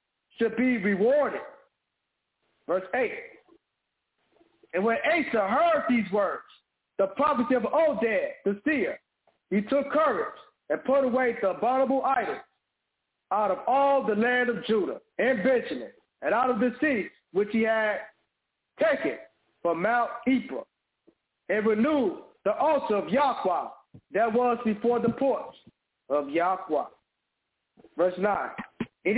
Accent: American